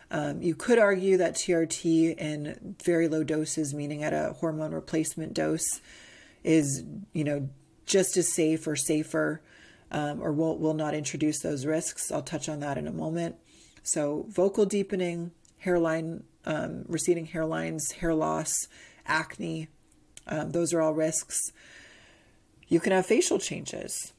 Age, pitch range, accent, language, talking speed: 30-49, 150-175 Hz, American, English, 145 wpm